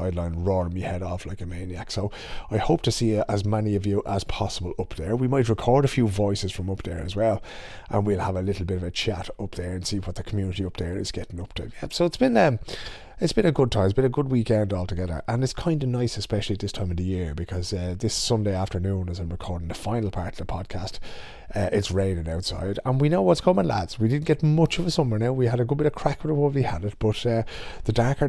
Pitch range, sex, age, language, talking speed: 90-115 Hz, male, 30-49, English, 270 wpm